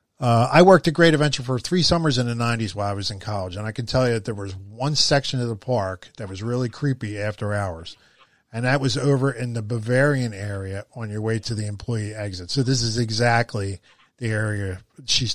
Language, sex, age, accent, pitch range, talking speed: English, male, 40-59, American, 105-135 Hz, 225 wpm